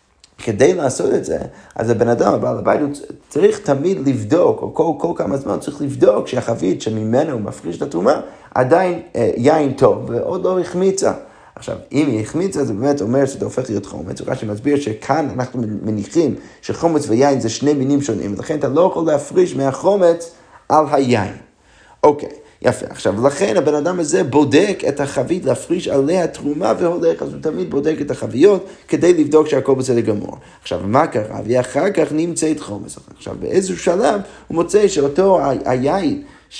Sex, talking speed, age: male, 165 wpm, 30-49